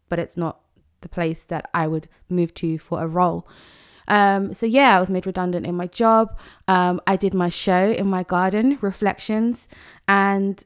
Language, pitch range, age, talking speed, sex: English, 180-200 Hz, 20-39, 185 wpm, female